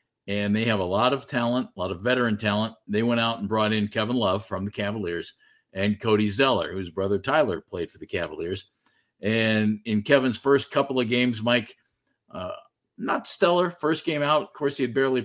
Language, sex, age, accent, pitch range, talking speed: English, male, 50-69, American, 105-125 Hz, 205 wpm